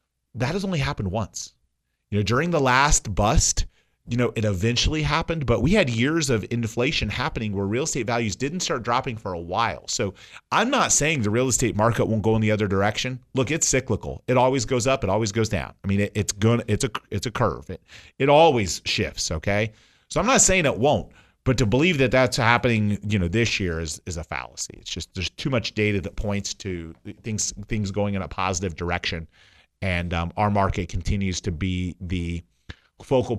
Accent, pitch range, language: American, 95-120 Hz, English